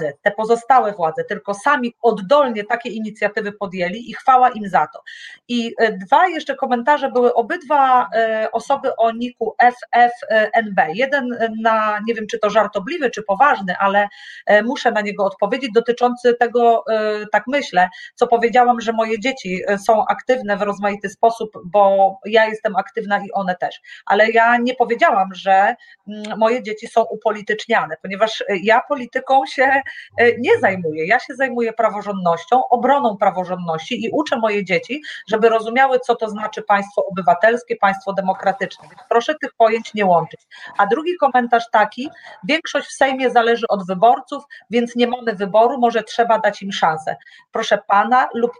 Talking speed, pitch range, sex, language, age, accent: 150 wpm, 205-250 Hz, female, Polish, 30-49, native